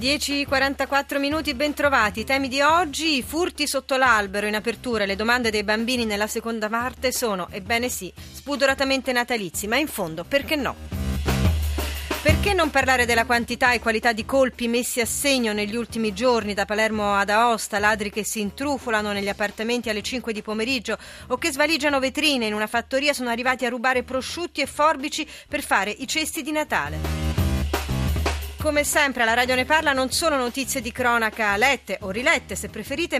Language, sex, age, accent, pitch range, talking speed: Italian, female, 30-49, native, 210-275 Hz, 170 wpm